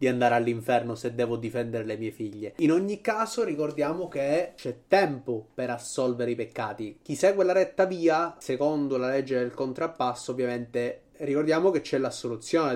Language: Italian